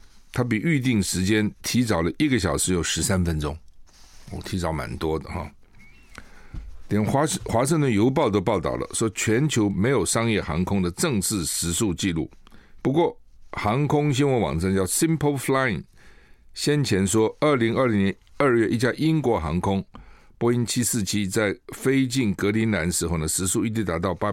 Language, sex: Chinese, male